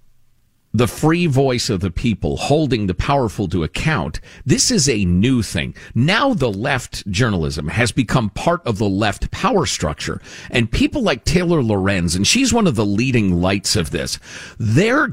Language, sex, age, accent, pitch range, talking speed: English, male, 50-69, American, 105-165 Hz, 170 wpm